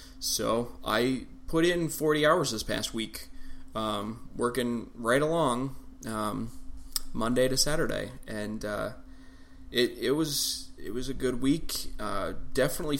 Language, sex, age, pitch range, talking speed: English, male, 20-39, 110-130 Hz, 135 wpm